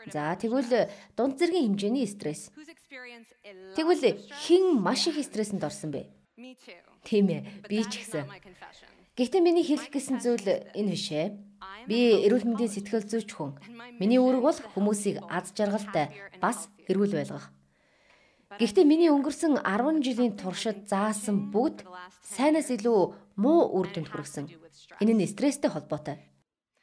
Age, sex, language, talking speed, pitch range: 30-49, female, English, 110 wpm, 180-255 Hz